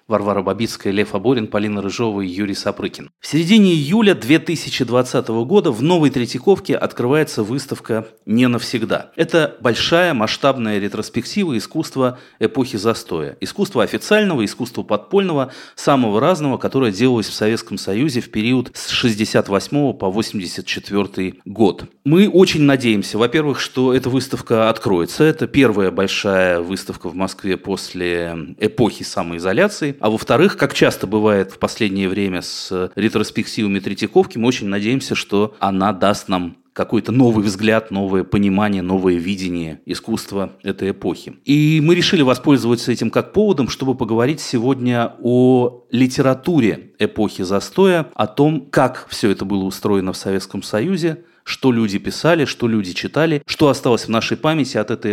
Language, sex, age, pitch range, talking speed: Russian, male, 30-49, 100-135 Hz, 140 wpm